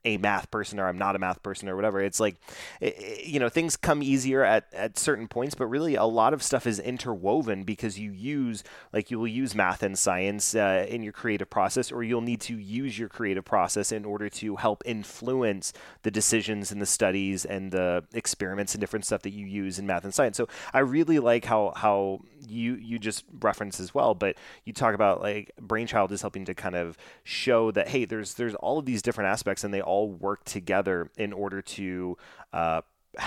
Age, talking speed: 30-49, 215 wpm